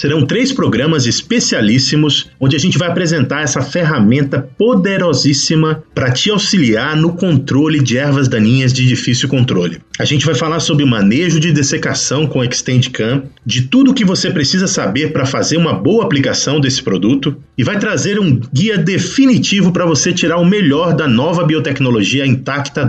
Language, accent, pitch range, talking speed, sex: Portuguese, Brazilian, 130-175 Hz, 165 wpm, male